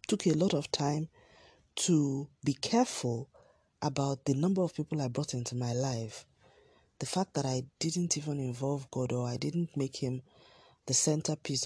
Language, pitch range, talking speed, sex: English, 120-145 Hz, 170 wpm, female